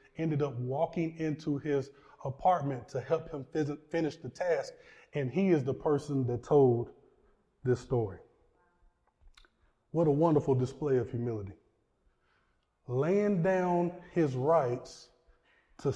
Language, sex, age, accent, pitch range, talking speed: English, male, 20-39, American, 145-215 Hz, 120 wpm